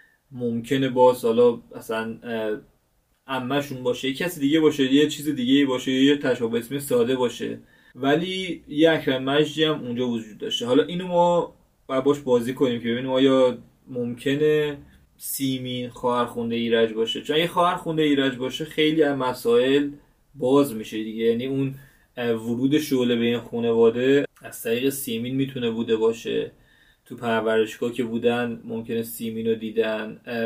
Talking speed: 145 wpm